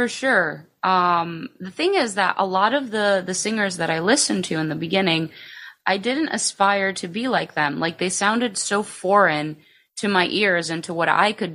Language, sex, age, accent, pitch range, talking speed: English, female, 20-39, American, 160-205 Hz, 210 wpm